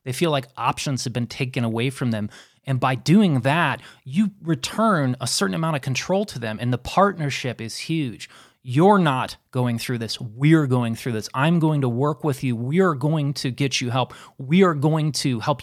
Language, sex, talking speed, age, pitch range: English, male, 210 wpm, 30-49, 125-160 Hz